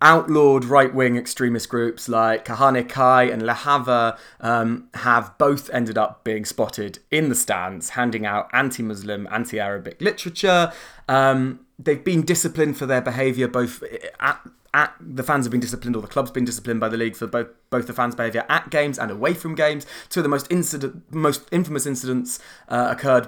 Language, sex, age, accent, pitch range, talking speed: English, male, 20-39, British, 115-145 Hz, 180 wpm